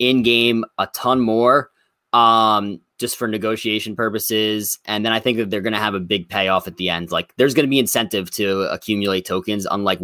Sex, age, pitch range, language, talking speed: male, 20-39, 100-125 Hz, English, 205 wpm